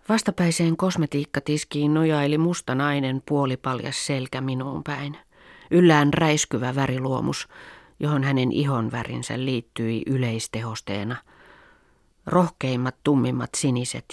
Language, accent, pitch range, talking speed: Finnish, native, 115-140 Hz, 85 wpm